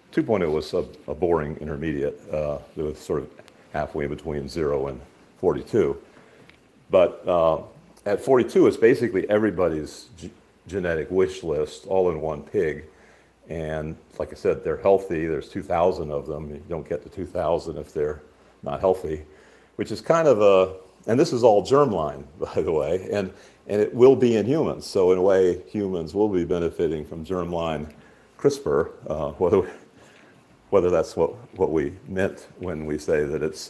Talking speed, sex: 160 wpm, male